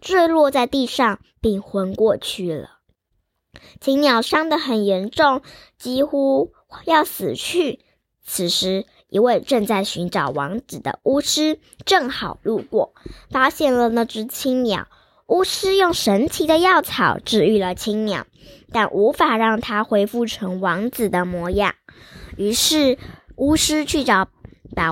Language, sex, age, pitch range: Chinese, male, 10-29, 205-285 Hz